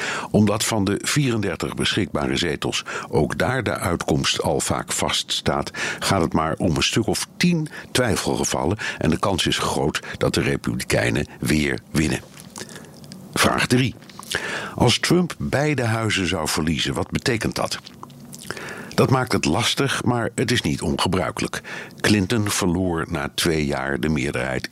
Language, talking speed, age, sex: Dutch, 145 wpm, 60-79, male